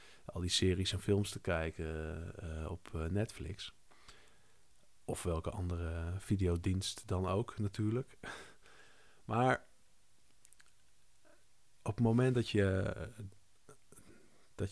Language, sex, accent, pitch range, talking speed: Dutch, male, Dutch, 85-100 Hz, 100 wpm